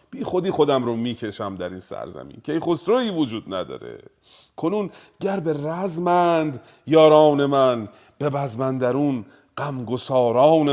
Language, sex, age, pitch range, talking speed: Persian, male, 40-59, 115-165 Hz, 125 wpm